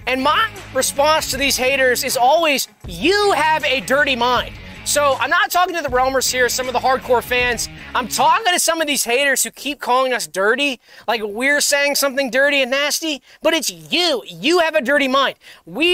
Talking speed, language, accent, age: 205 wpm, English, American, 20-39